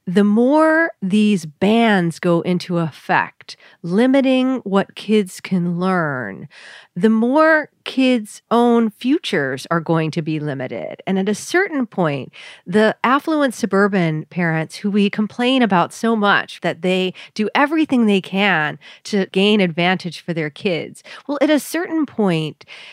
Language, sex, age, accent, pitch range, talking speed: English, female, 40-59, American, 170-230 Hz, 140 wpm